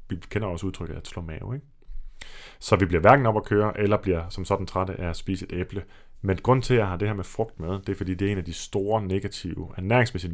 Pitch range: 90-110 Hz